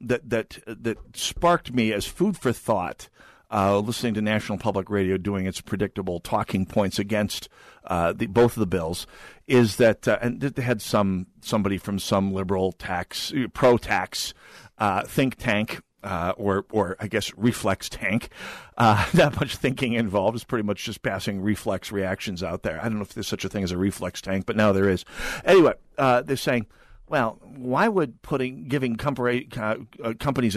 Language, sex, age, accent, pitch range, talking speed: English, male, 50-69, American, 100-135 Hz, 185 wpm